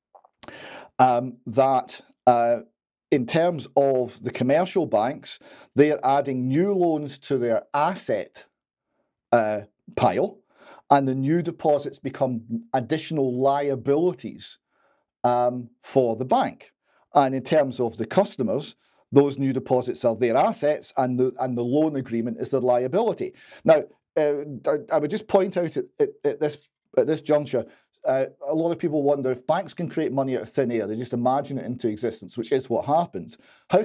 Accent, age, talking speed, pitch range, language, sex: British, 40-59, 160 wpm, 125-155 Hz, English, male